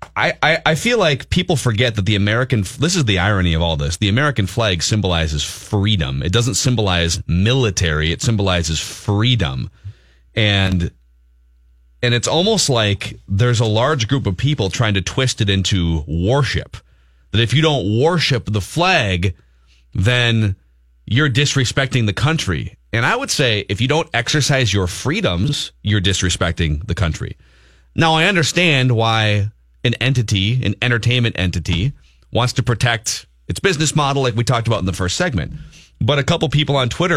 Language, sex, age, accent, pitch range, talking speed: English, male, 30-49, American, 90-125 Hz, 160 wpm